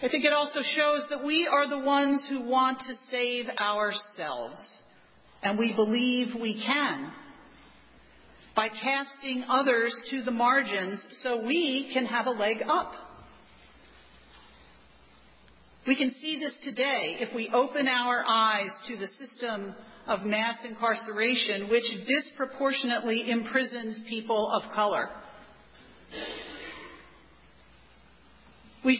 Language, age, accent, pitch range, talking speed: English, 50-69, American, 230-275 Hz, 115 wpm